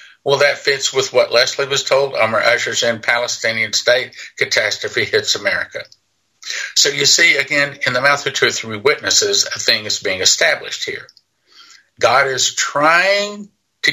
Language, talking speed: English, 170 wpm